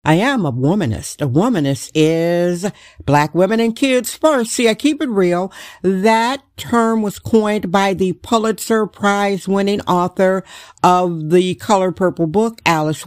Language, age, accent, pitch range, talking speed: English, 50-69, American, 175-230 Hz, 150 wpm